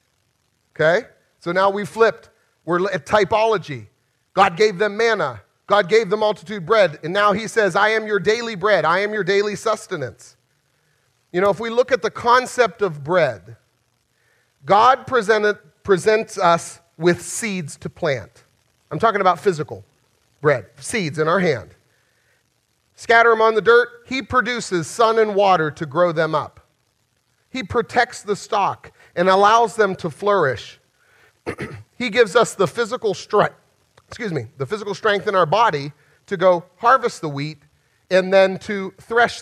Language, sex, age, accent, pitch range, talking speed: English, male, 40-59, American, 140-210 Hz, 155 wpm